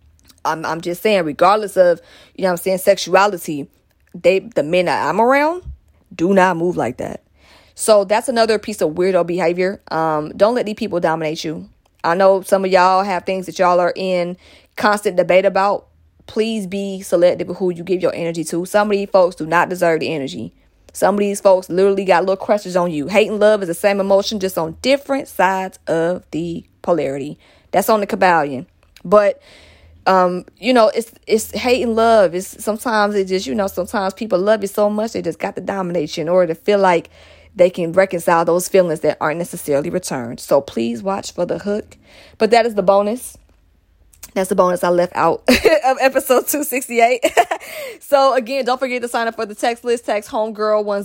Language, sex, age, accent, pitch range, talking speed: English, female, 20-39, American, 175-215 Hz, 205 wpm